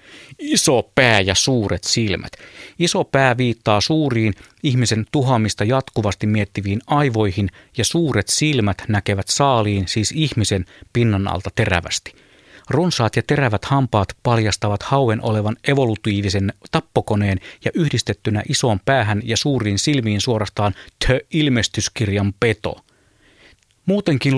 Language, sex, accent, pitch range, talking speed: Finnish, male, native, 100-130 Hz, 110 wpm